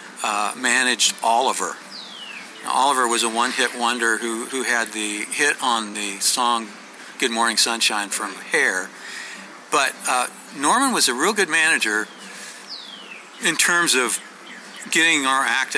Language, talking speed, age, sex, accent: English, 135 wpm, 50-69, male, American